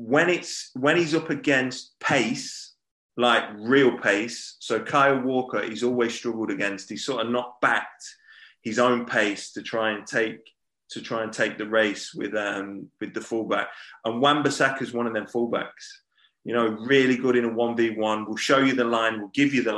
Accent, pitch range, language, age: British, 110-135 Hz, English, 30-49